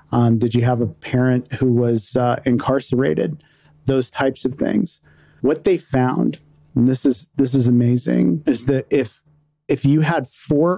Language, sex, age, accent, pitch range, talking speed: English, male, 40-59, American, 125-150 Hz, 165 wpm